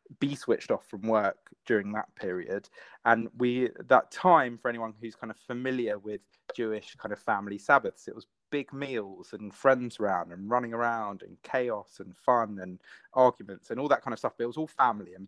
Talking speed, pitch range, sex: 205 wpm, 110-140 Hz, male